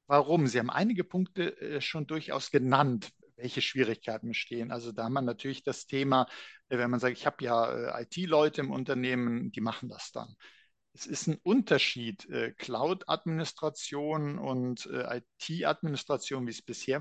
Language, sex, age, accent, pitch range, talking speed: German, male, 50-69, German, 120-150 Hz, 145 wpm